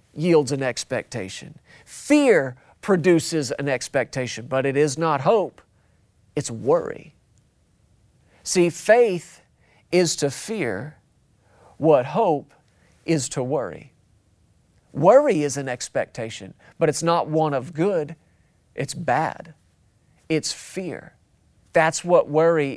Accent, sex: American, male